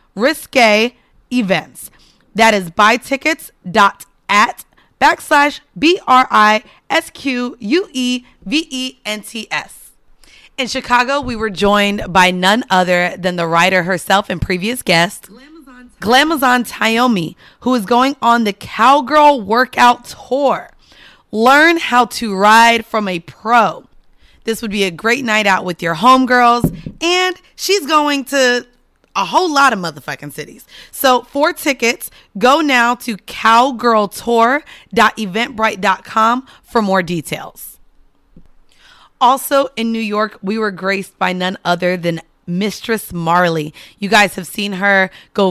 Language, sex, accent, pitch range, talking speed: English, female, American, 195-255 Hz, 130 wpm